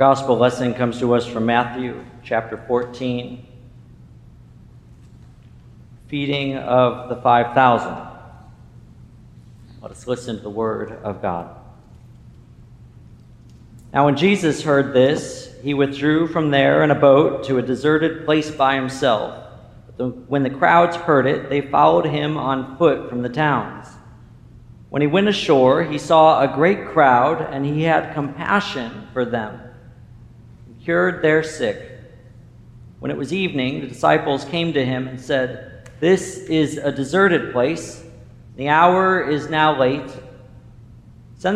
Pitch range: 125-160 Hz